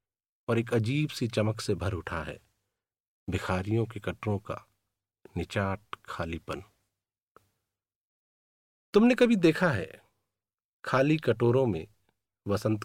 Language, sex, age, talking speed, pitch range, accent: Hindi, male, 50-69, 105 wpm, 100-120 Hz, native